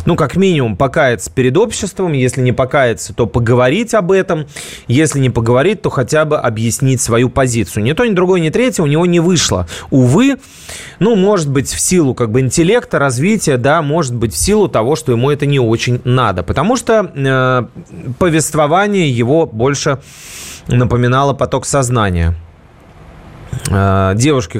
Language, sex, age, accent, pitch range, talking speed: Russian, male, 30-49, native, 115-170 Hz, 155 wpm